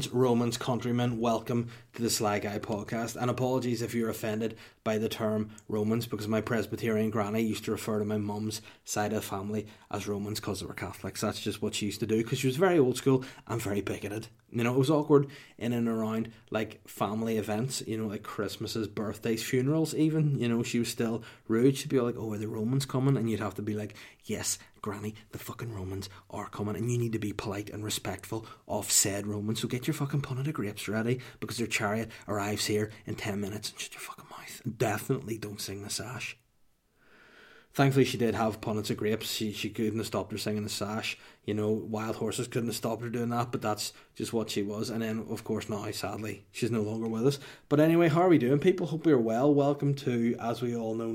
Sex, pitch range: male, 105-125 Hz